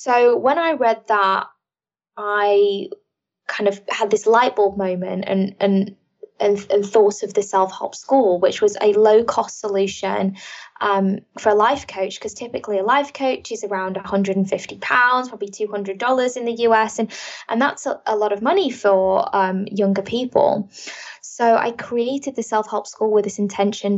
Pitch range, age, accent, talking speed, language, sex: 195-230 Hz, 10-29, British, 170 wpm, English, female